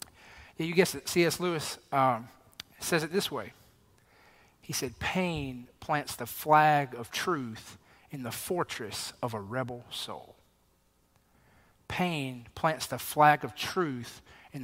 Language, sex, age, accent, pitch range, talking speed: English, male, 40-59, American, 140-190 Hz, 130 wpm